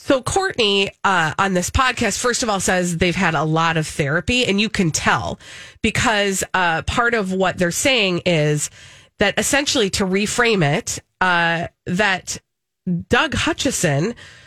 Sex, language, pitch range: female, English, 155-200 Hz